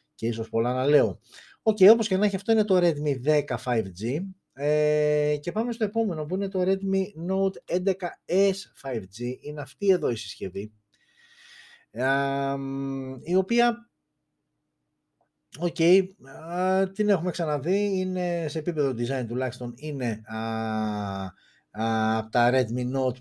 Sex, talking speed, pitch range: male, 135 wpm, 120-175 Hz